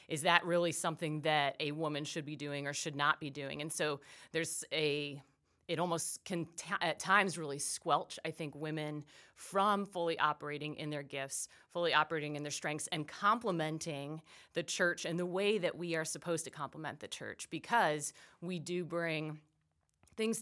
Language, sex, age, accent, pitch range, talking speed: English, female, 30-49, American, 150-170 Hz, 180 wpm